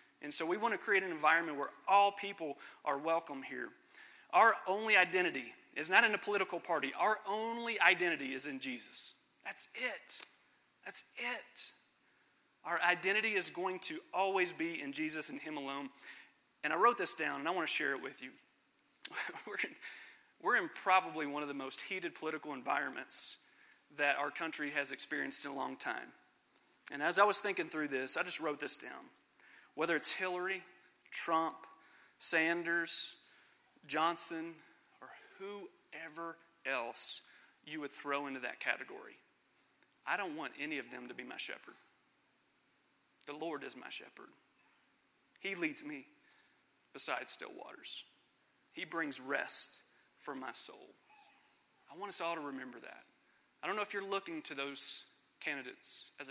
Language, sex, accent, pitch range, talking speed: English, male, American, 155-205 Hz, 160 wpm